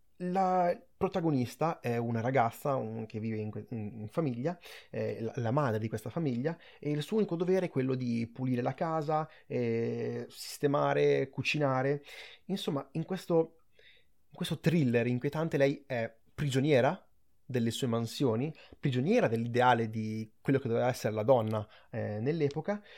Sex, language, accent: male, Italian, native